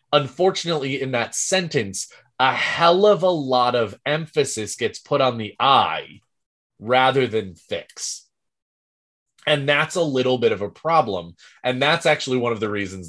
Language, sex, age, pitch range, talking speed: English, male, 20-39, 110-145 Hz, 155 wpm